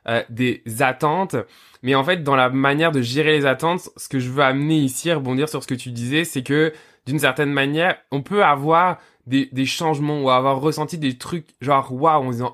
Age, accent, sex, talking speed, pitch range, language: 20-39, French, male, 225 wpm, 130-160 Hz, French